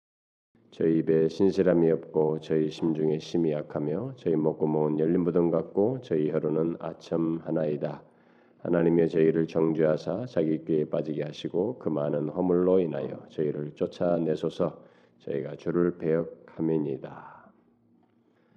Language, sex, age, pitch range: Korean, male, 40-59, 80-90 Hz